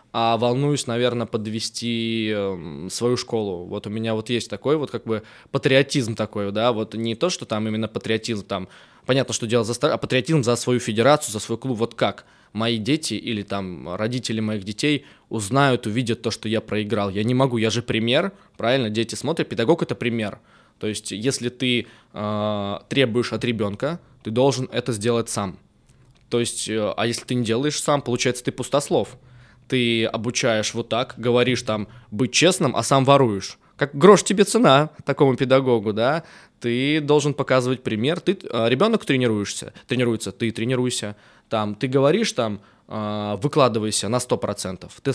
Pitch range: 110-130 Hz